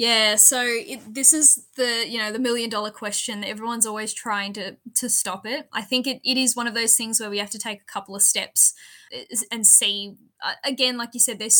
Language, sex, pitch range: English, female, 195-245 Hz